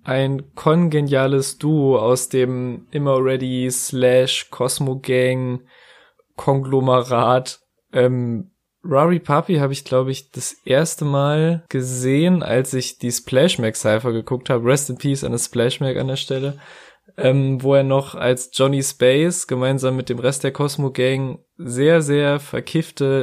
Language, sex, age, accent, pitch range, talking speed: German, male, 20-39, German, 125-145 Hz, 140 wpm